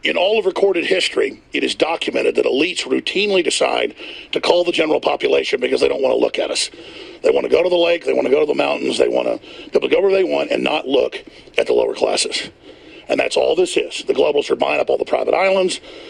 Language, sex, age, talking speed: English, male, 50-69, 250 wpm